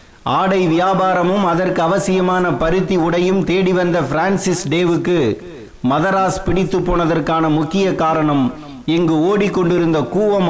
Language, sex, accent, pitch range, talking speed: Tamil, male, native, 160-195 Hz, 95 wpm